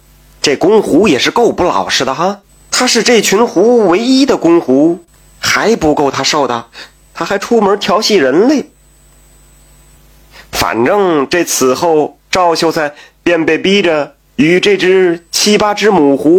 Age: 30-49